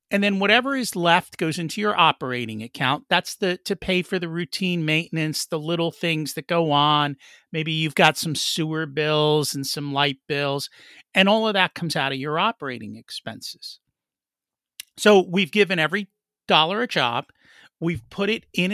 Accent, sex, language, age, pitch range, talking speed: American, male, English, 50-69, 145-200 Hz, 175 wpm